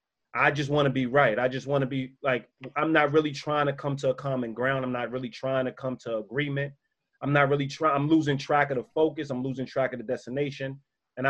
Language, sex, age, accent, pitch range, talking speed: English, male, 30-49, American, 130-150 Hz, 250 wpm